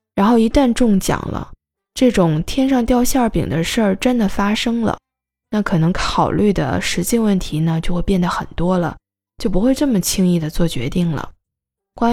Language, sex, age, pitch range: Chinese, female, 20-39, 170-230 Hz